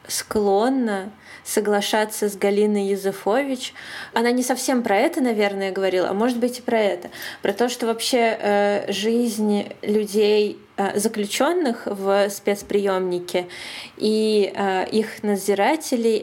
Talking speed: 120 wpm